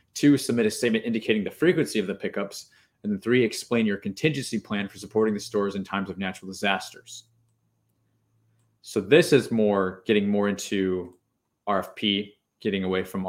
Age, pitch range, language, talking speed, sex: 20-39, 100-120 Hz, English, 165 wpm, male